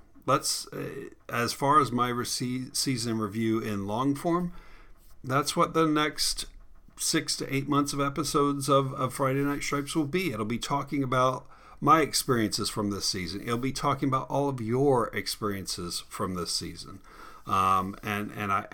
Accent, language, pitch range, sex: American, English, 105-135 Hz, male